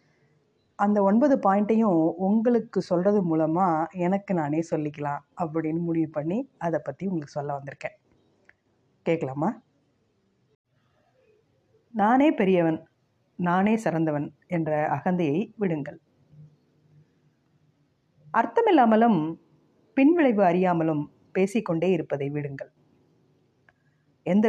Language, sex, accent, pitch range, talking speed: Tamil, female, native, 150-200 Hz, 80 wpm